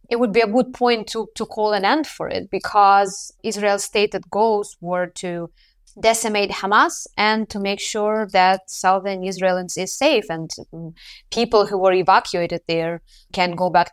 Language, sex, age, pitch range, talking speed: English, female, 20-39, 170-210 Hz, 170 wpm